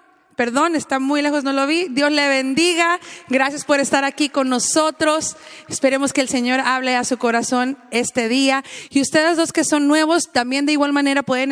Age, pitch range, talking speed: 30-49, 225-285 Hz, 195 wpm